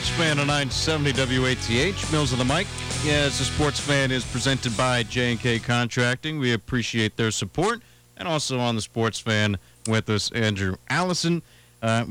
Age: 40-59